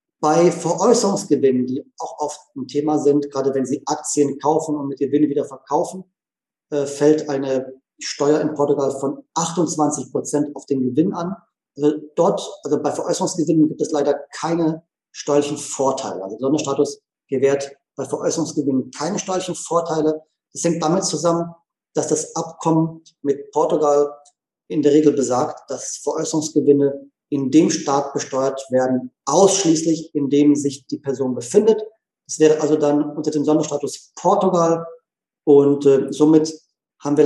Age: 40-59